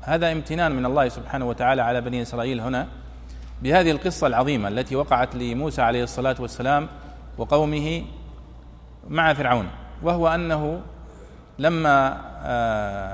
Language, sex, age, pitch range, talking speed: Arabic, male, 40-59, 120-165 Hz, 115 wpm